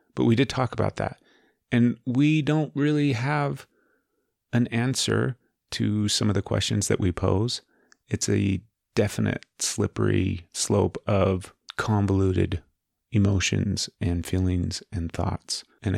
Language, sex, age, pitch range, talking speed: English, male, 30-49, 95-115 Hz, 130 wpm